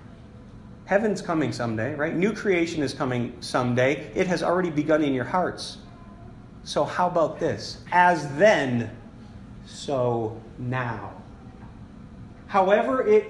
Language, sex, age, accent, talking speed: English, male, 40-59, American, 115 wpm